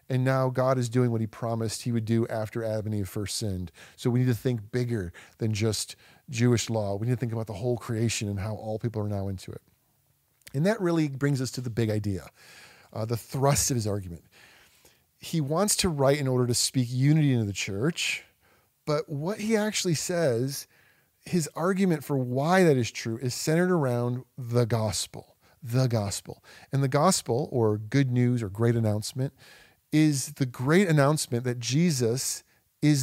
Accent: American